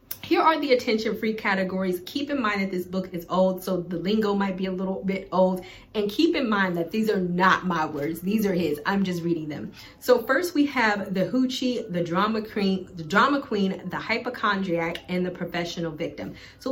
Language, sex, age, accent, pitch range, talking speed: English, female, 30-49, American, 175-215 Hz, 200 wpm